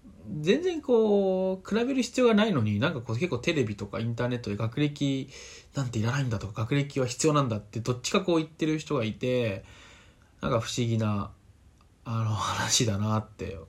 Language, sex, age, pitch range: Japanese, male, 20-39, 105-140 Hz